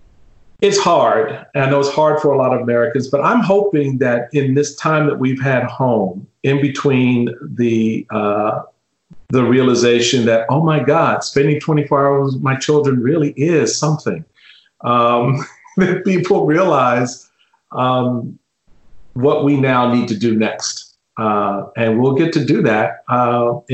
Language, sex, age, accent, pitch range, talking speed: English, male, 50-69, American, 125-145 Hz, 155 wpm